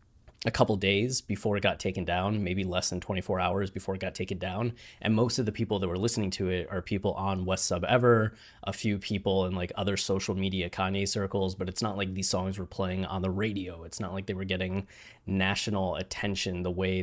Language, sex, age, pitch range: English, male, 20-39, 95-110 Hz